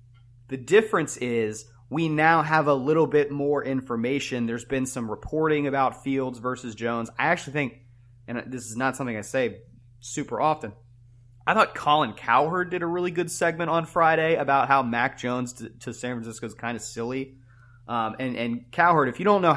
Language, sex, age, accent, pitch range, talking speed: English, male, 30-49, American, 120-145 Hz, 190 wpm